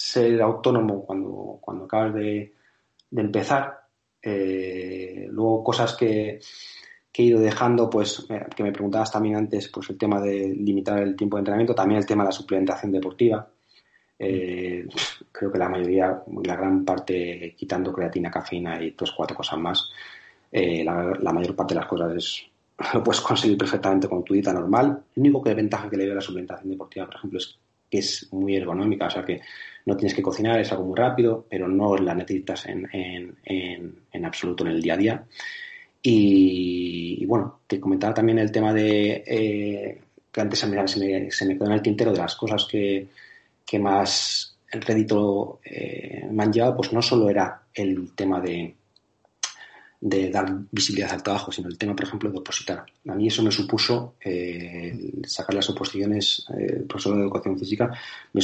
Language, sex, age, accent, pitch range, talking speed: Spanish, male, 30-49, Spanish, 95-110 Hz, 190 wpm